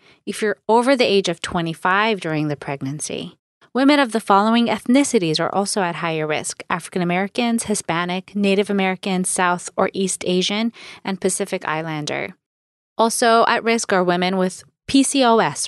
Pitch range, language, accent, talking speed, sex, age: 170-230 Hz, English, American, 145 wpm, female, 30-49